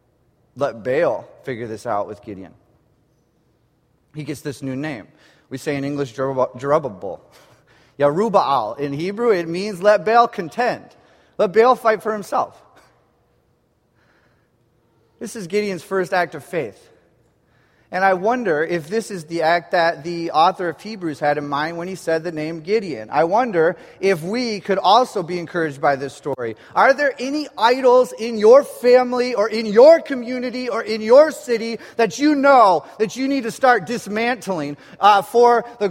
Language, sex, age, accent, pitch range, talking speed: English, male, 30-49, American, 185-250 Hz, 165 wpm